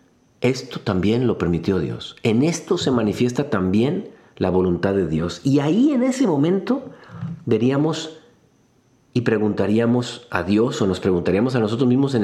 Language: Spanish